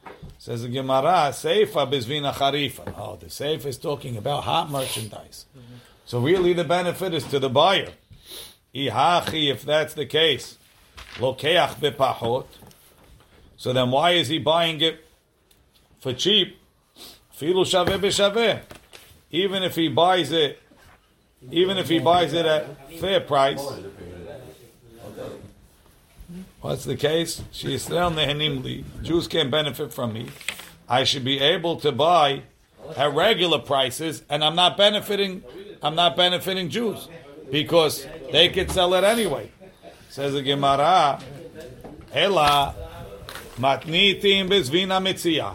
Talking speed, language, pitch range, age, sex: 110 wpm, English, 135-180 Hz, 50-69, male